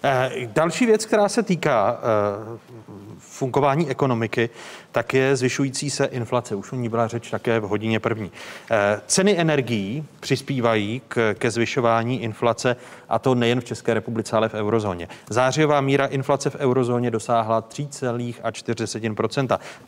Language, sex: Czech, male